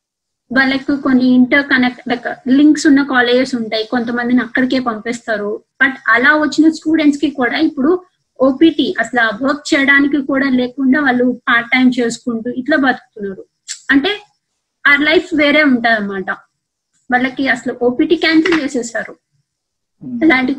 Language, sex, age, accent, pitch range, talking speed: Telugu, female, 20-39, native, 245-315 Hz, 125 wpm